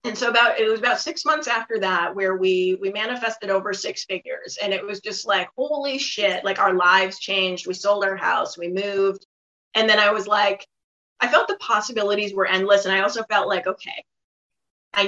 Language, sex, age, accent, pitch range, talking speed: English, female, 30-49, American, 190-240 Hz, 205 wpm